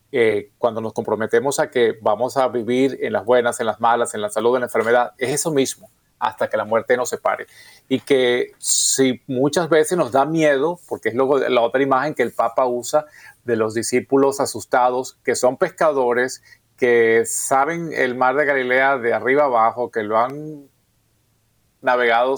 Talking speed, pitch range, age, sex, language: 180 wpm, 115-140 Hz, 30-49, male, Spanish